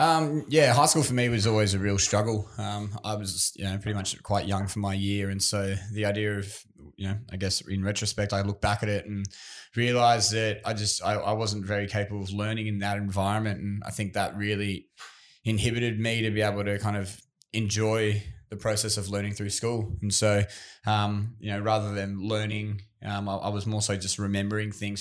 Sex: male